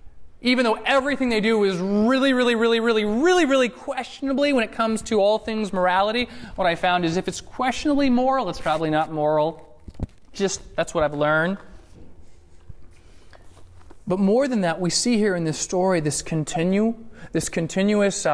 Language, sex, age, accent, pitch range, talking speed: English, male, 30-49, American, 150-215 Hz, 165 wpm